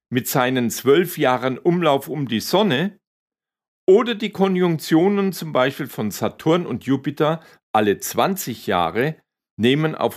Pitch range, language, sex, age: 125-180 Hz, German, male, 50-69